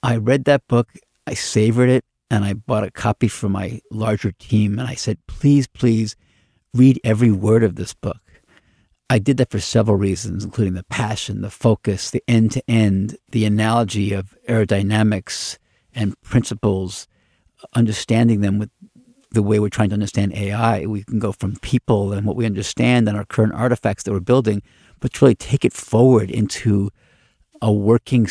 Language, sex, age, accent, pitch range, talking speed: English, male, 50-69, American, 100-120 Hz, 170 wpm